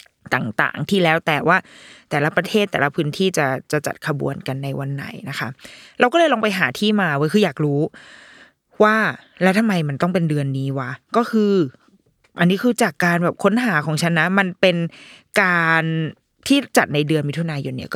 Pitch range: 155-220 Hz